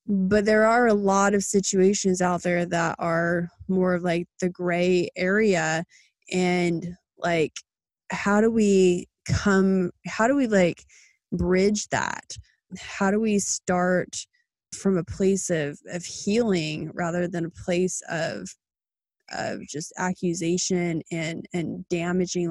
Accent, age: American, 20-39